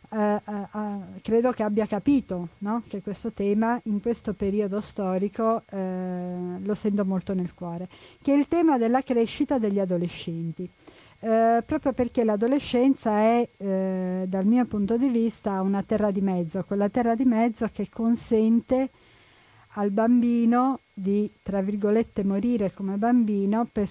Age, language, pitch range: 50-69, Italian, 190-235 Hz